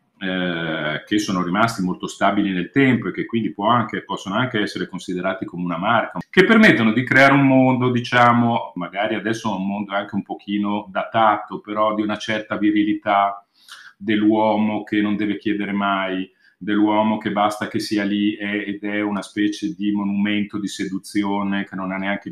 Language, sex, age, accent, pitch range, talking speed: Italian, male, 40-59, native, 95-105 Hz, 170 wpm